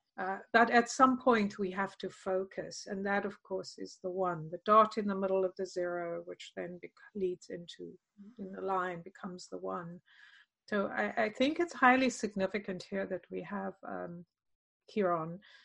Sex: female